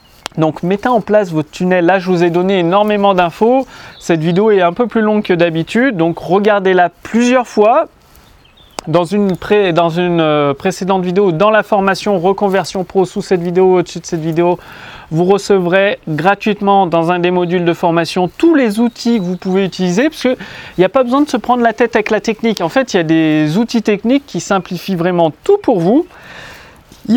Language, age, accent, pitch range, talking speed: French, 30-49, French, 170-215 Hz, 200 wpm